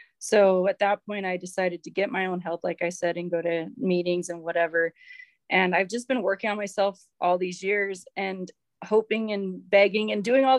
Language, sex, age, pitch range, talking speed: English, female, 20-39, 175-205 Hz, 210 wpm